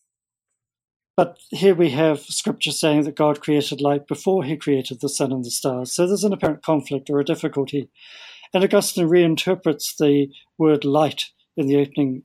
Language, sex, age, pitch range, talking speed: English, male, 40-59, 140-170 Hz, 170 wpm